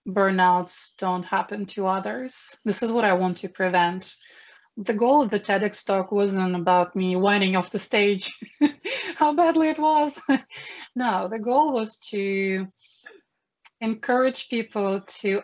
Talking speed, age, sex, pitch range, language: 145 wpm, 20-39, female, 185-225 Hz, English